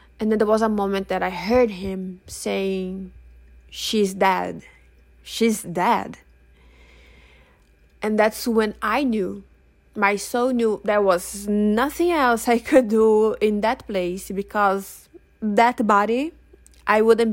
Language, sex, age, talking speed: English, female, 20-39, 130 wpm